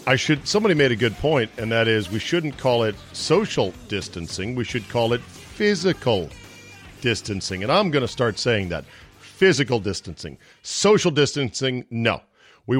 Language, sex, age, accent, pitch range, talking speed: English, male, 40-59, American, 105-140 Hz, 165 wpm